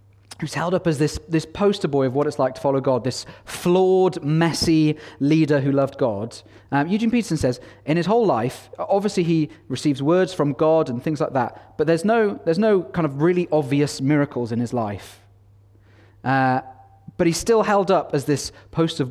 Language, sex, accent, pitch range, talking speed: English, male, British, 105-160 Hz, 195 wpm